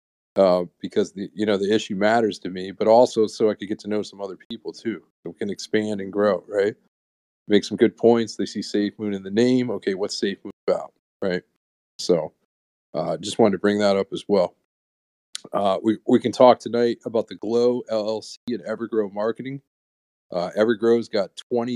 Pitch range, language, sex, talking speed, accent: 100-115 Hz, English, male, 200 wpm, American